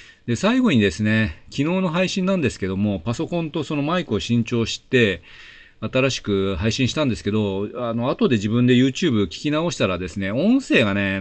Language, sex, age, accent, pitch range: Japanese, male, 40-59, native, 100-125 Hz